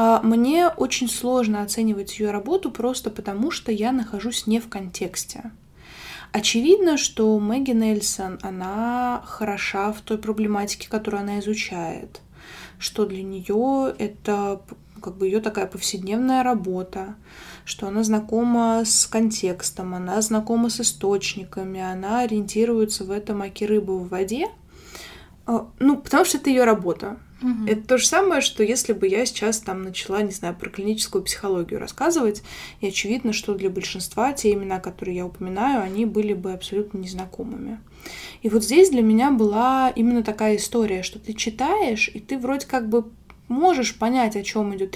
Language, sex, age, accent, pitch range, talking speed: Russian, female, 20-39, native, 200-240 Hz, 150 wpm